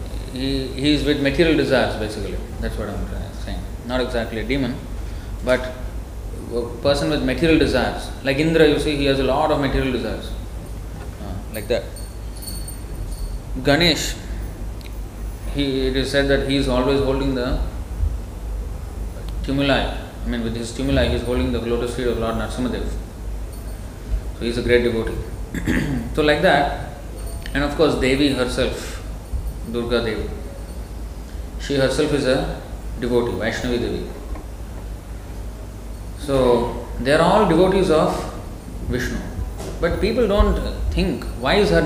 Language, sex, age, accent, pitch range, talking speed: English, male, 20-39, Indian, 95-130 Hz, 140 wpm